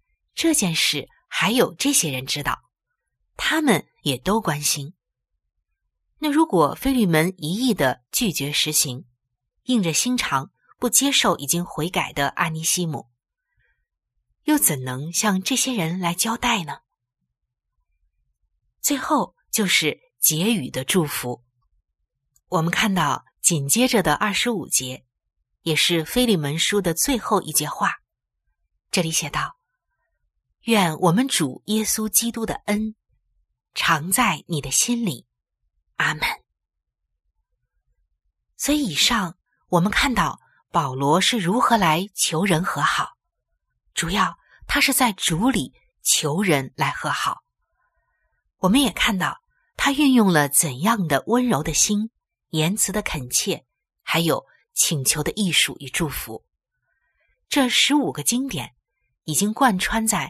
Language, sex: Chinese, female